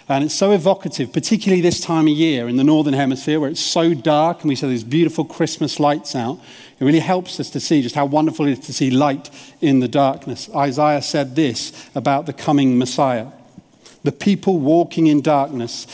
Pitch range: 135-160 Hz